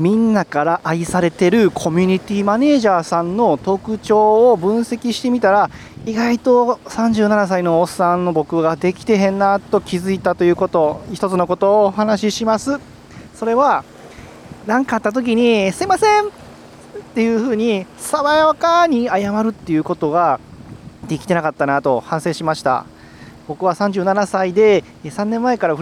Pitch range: 155-220 Hz